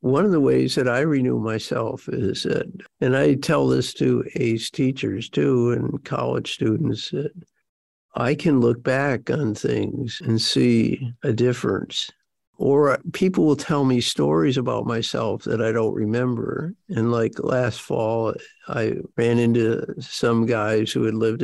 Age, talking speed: 60-79, 155 wpm